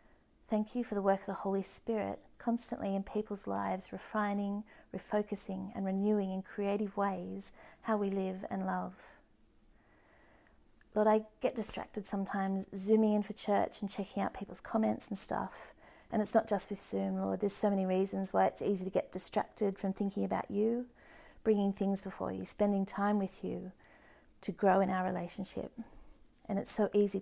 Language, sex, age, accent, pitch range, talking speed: English, female, 40-59, Australian, 190-210 Hz, 175 wpm